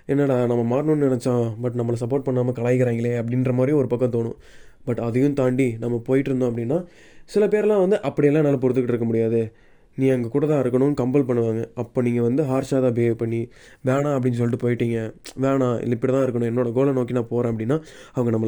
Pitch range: 120-140 Hz